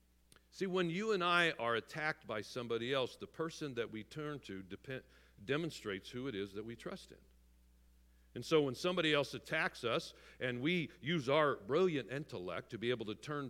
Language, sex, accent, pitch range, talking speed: English, male, American, 100-155 Hz, 190 wpm